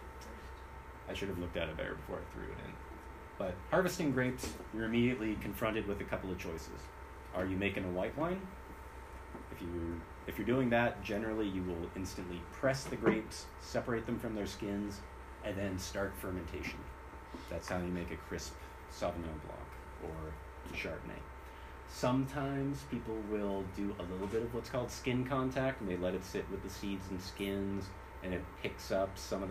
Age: 30-49